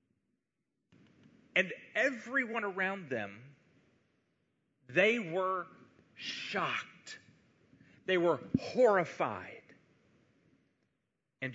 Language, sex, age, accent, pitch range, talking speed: English, male, 40-59, American, 165-240 Hz, 55 wpm